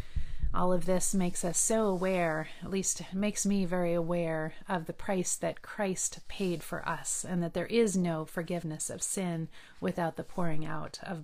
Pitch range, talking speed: 170-200 Hz, 180 wpm